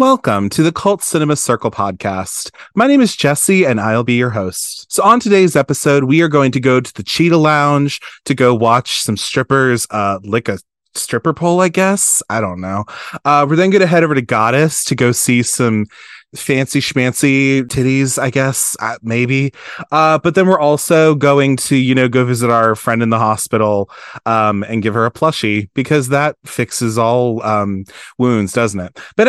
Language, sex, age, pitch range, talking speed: English, male, 20-39, 115-160 Hz, 195 wpm